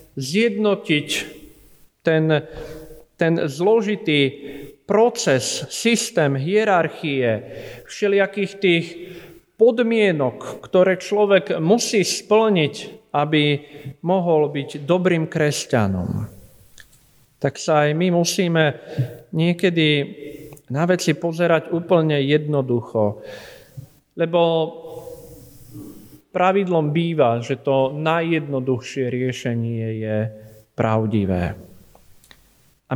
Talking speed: 75 wpm